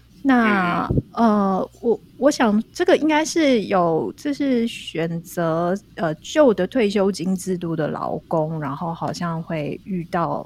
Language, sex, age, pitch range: Chinese, female, 30-49, 170-230 Hz